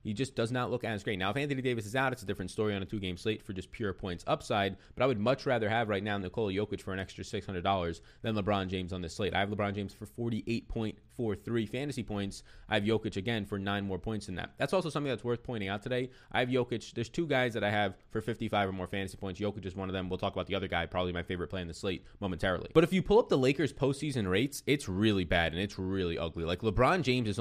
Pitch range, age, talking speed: 95-125 Hz, 20-39, 275 wpm